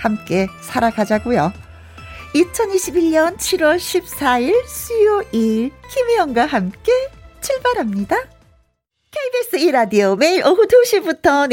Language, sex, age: Korean, female, 40-59